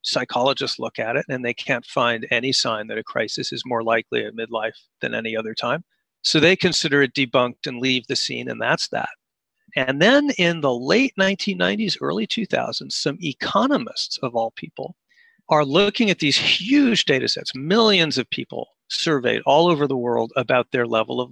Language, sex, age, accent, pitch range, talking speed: English, male, 40-59, American, 130-200 Hz, 185 wpm